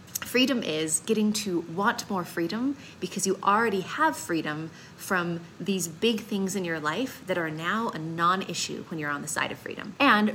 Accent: American